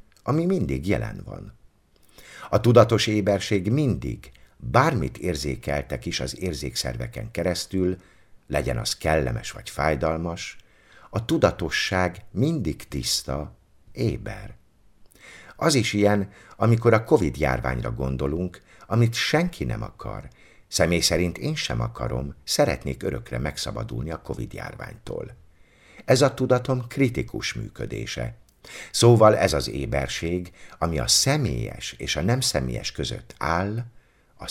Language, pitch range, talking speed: Hungarian, 80-115 Hz, 110 wpm